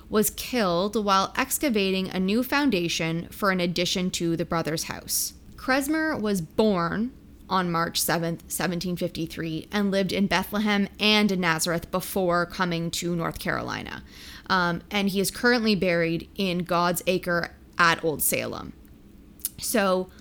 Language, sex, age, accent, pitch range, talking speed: English, female, 20-39, American, 170-215 Hz, 135 wpm